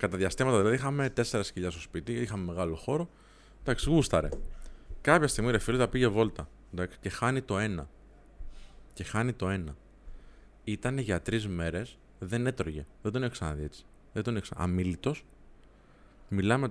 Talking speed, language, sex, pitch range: 150 wpm, Greek, male, 90-125 Hz